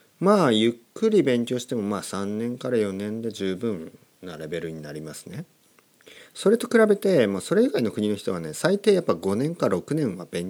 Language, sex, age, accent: Japanese, male, 40-59, native